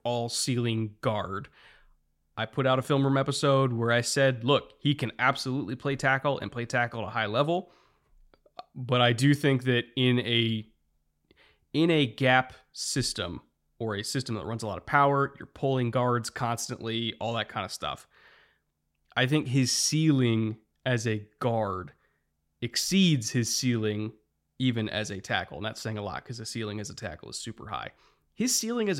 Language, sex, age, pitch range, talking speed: English, male, 30-49, 110-135 Hz, 180 wpm